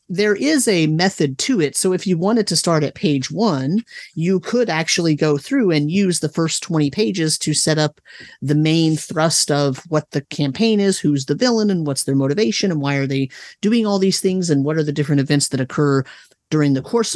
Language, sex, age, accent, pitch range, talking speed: English, male, 30-49, American, 145-190 Hz, 220 wpm